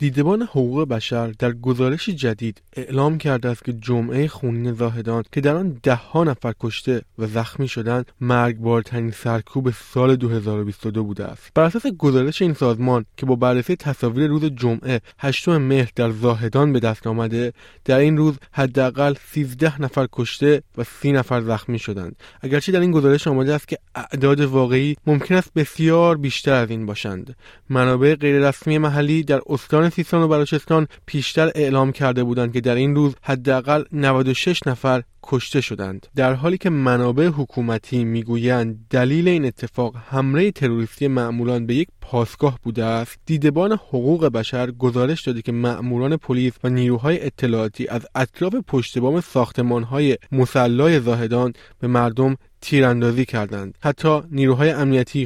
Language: Persian